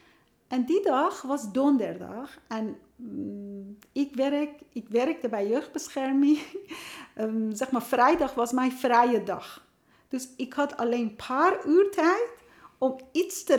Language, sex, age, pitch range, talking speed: Dutch, female, 40-59, 230-315 Hz, 140 wpm